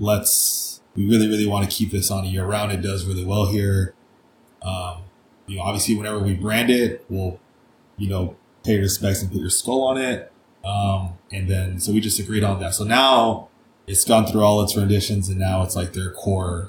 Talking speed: 205 wpm